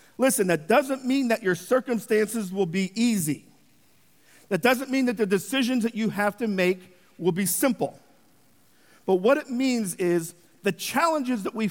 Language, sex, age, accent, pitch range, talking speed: English, male, 50-69, American, 185-255 Hz, 170 wpm